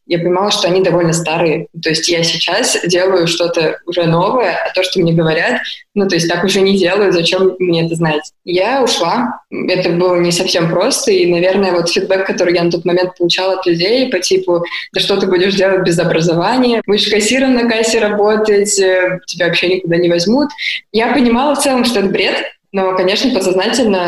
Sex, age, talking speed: female, 20-39, 195 wpm